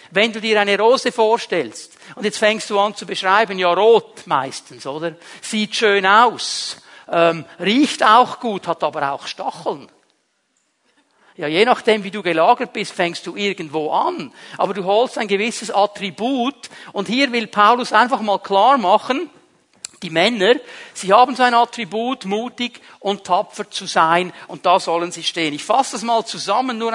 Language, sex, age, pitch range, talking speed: German, male, 50-69, 190-235 Hz, 170 wpm